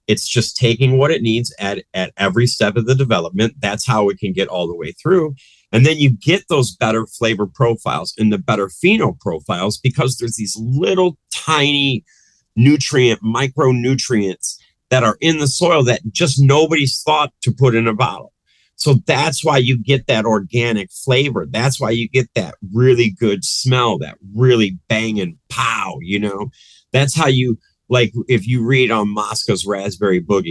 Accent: American